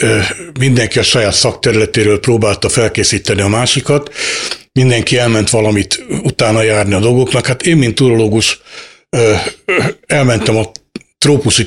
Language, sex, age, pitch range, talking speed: Hungarian, male, 60-79, 105-130 Hz, 115 wpm